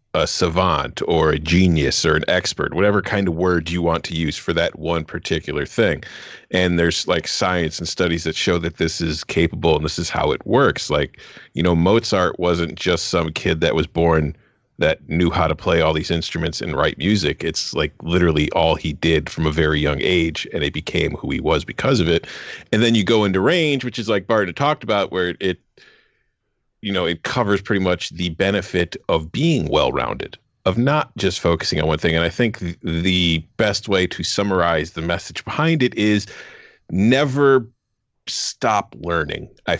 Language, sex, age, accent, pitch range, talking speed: English, male, 40-59, American, 85-105 Hz, 195 wpm